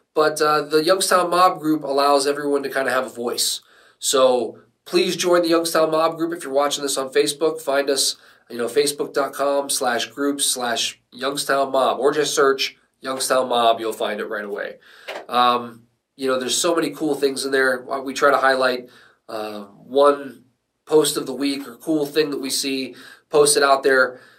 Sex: male